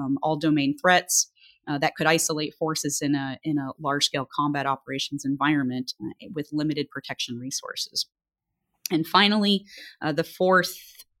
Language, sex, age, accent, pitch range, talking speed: English, female, 30-49, American, 145-165 Hz, 145 wpm